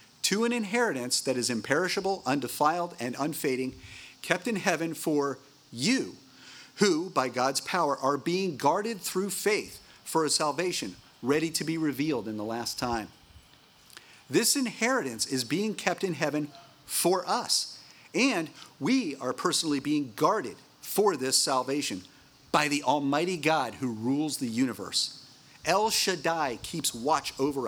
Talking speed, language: 140 wpm, English